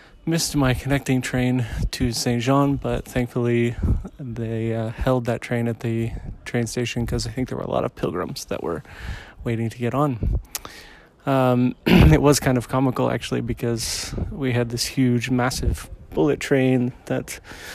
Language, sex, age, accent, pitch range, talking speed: English, male, 20-39, American, 115-130 Hz, 165 wpm